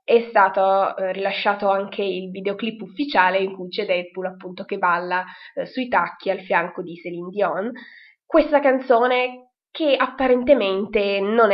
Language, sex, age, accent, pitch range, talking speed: Italian, female, 20-39, native, 185-250 Hz, 145 wpm